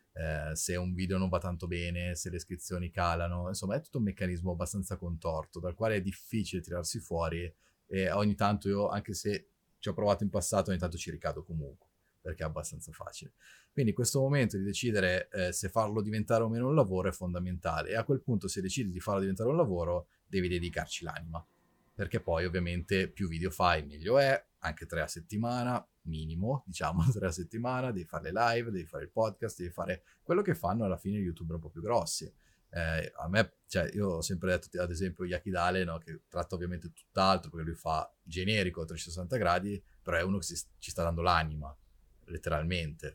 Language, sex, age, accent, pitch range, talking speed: Italian, male, 30-49, native, 85-100 Hz, 200 wpm